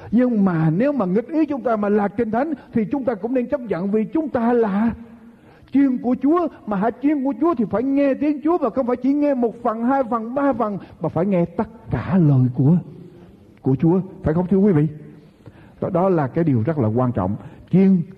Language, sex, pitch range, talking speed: Vietnamese, male, 155-245 Hz, 230 wpm